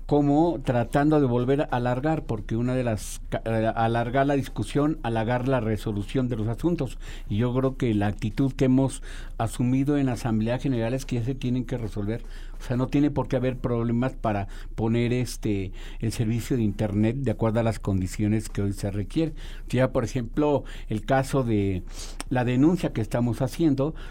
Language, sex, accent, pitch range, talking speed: Spanish, male, Mexican, 110-135 Hz, 185 wpm